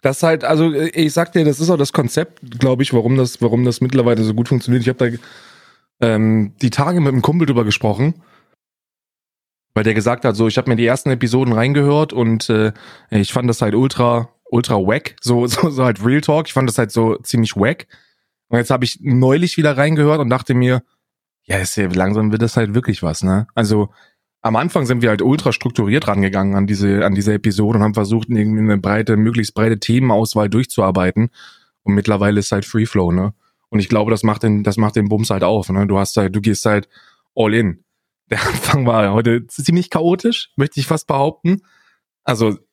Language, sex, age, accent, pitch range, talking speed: German, male, 20-39, German, 105-135 Hz, 210 wpm